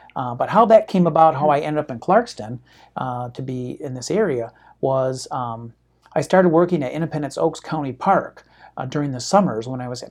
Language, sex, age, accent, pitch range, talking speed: English, male, 50-69, American, 125-155 Hz, 215 wpm